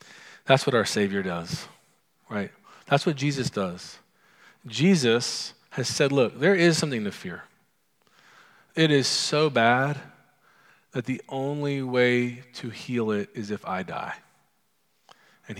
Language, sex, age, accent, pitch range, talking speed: English, male, 40-59, American, 115-140 Hz, 135 wpm